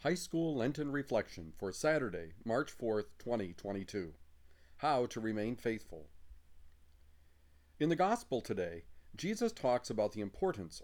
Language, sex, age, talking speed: English, male, 40-59, 120 wpm